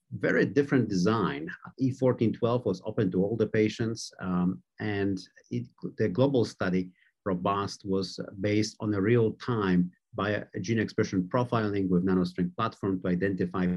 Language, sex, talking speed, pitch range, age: English, male, 145 wpm, 95-115 Hz, 50-69